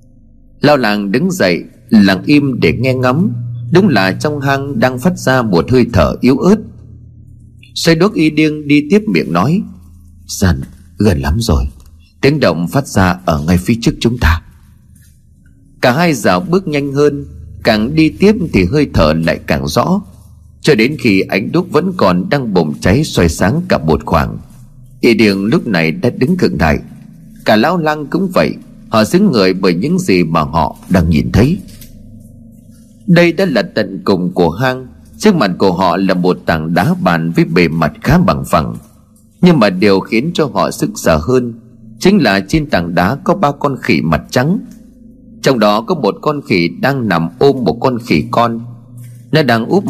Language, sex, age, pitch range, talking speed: Vietnamese, male, 30-49, 95-150 Hz, 185 wpm